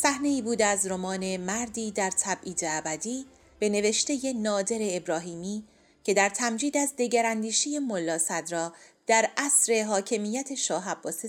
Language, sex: English, female